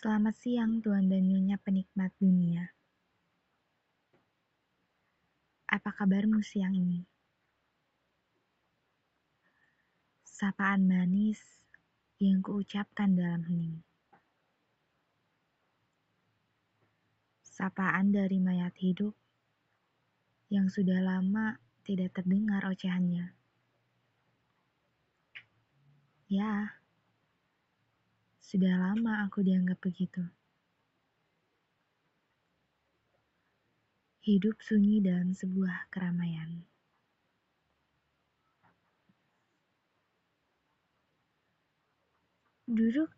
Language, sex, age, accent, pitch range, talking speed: Indonesian, female, 20-39, native, 185-210 Hz, 55 wpm